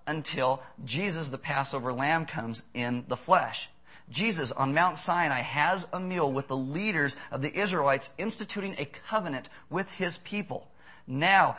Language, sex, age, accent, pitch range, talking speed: English, male, 40-59, American, 125-175 Hz, 150 wpm